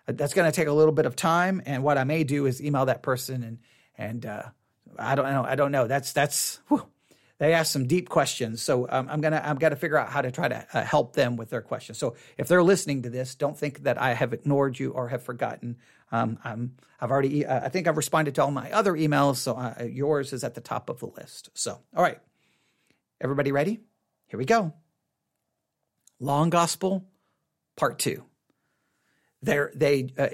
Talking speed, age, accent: 215 wpm, 40-59, American